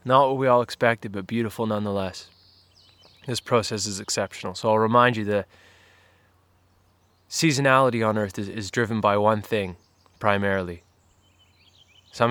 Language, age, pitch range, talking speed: English, 20-39, 95-105 Hz, 135 wpm